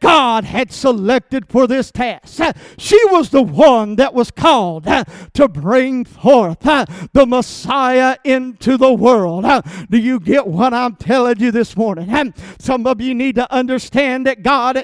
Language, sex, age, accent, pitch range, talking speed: English, male, 50-69, American, 240-275 Hz, 155 wpm